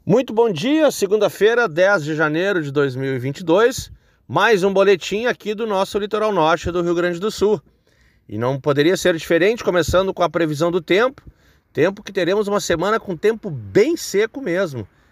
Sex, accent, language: male, Brazilian, Portuguese